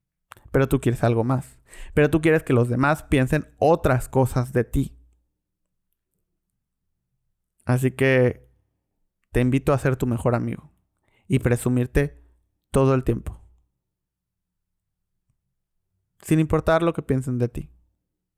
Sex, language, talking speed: male, Spanish, 120 wpm